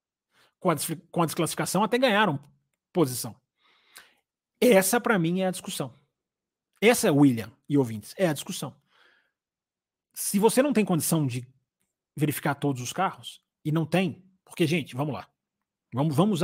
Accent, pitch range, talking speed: Brazilian, 155-205 Hz, 145 wpm